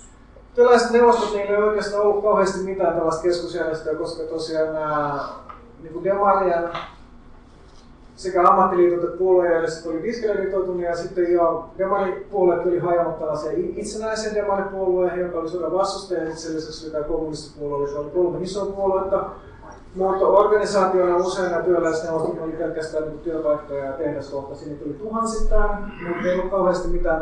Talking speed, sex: 130 wpm, male